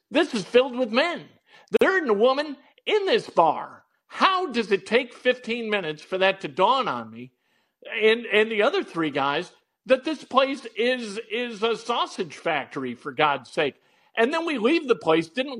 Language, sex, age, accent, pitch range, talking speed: English, male, 50-69, American, 150-215 Hz, 185 wpm